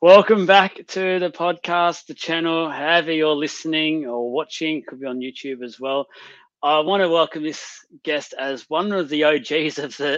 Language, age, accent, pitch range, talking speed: English, 30-49, Australian, 130-150 Hz, 190 wpm